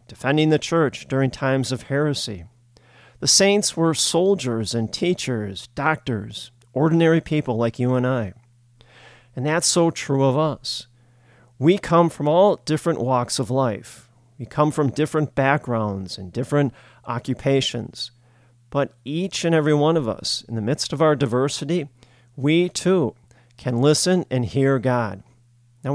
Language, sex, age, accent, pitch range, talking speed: English, male, 40-59, American, 120-155 Hz, 145 wpm